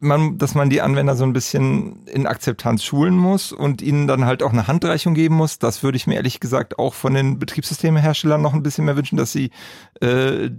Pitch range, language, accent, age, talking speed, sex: 125-150 Hz, German, German, 40-59, 220 wpm, male